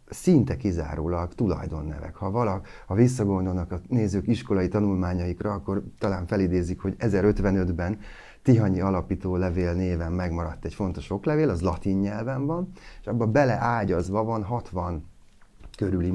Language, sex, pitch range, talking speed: Hungarian, male, 90-115 Hz, 125 wpm